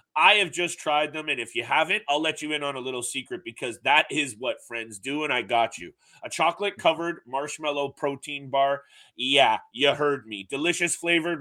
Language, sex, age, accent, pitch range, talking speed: English, male, 30-49, American, 135-175 Hz, 195 wpm